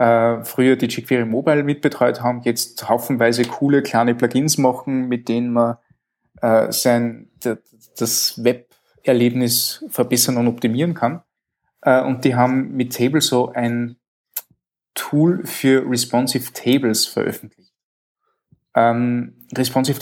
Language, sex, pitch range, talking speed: German, male, 115-130 Hz, 110 wpm